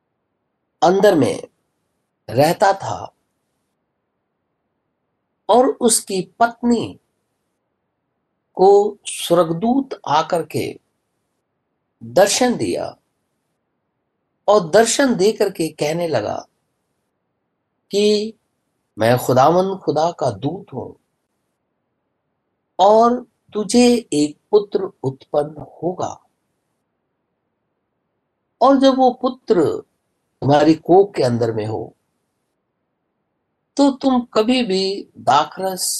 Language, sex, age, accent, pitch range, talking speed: Hindi, male, 50-69, native, 155-245 Hz, 80 wpm